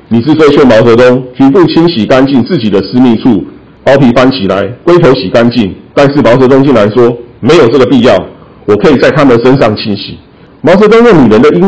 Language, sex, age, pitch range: Chinese, male, 50-69, 120-160 Hz